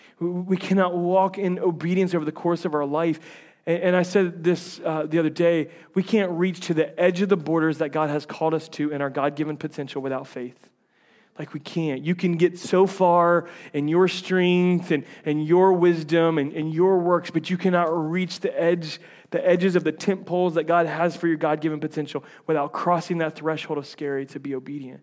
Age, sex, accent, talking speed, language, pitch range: 30-49, male, American, 210 wpm, English, 155-180 Hz